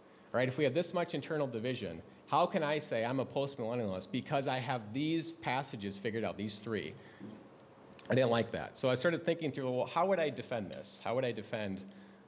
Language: English